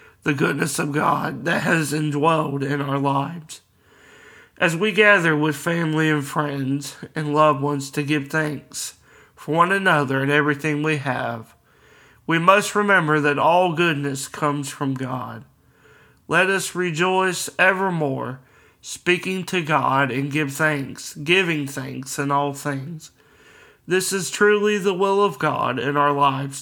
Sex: male